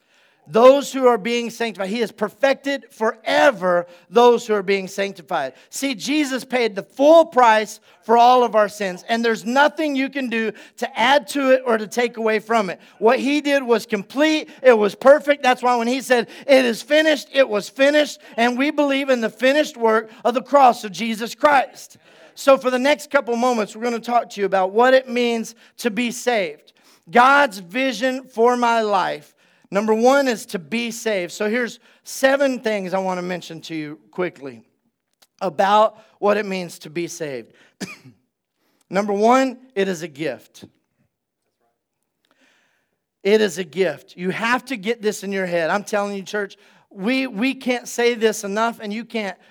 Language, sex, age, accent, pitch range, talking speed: English, male, 40-59, American, 200-255 Hz, 185 wpm